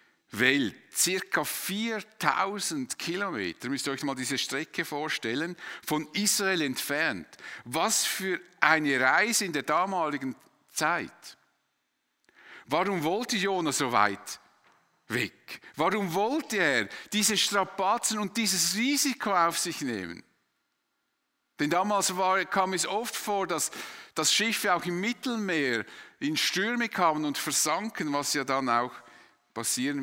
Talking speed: 120 wpm